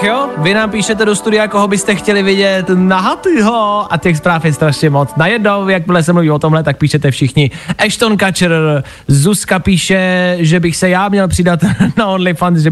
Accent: native